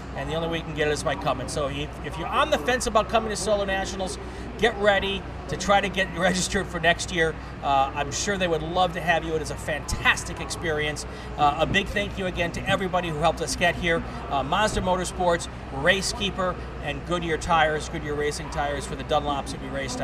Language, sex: English, male